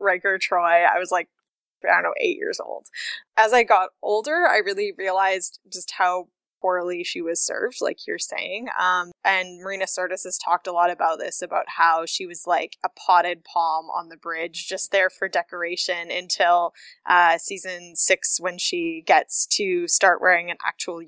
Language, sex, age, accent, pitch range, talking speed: English, female, 10-29, American, 185-235 Hz, 180 wpm